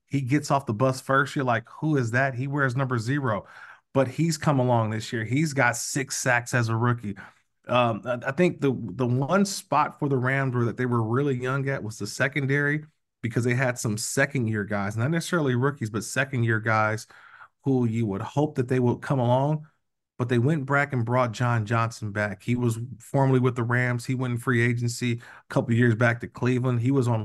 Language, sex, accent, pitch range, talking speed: English, male, American, 120-140 Hz, 220 wpm